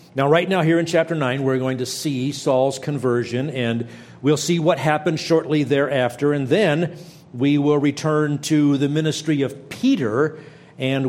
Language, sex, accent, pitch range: English, male, American, 120-155 Hz